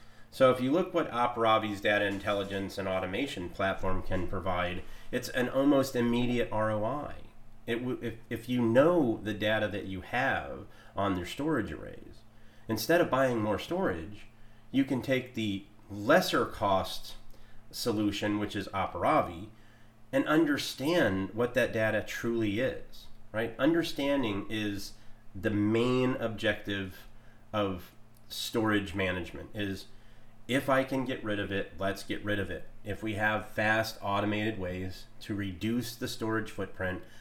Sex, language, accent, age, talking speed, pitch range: male, English, American, 30-49, 140 wpm, 100-115 Hz